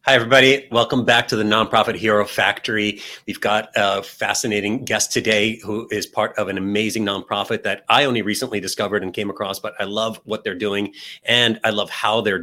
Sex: male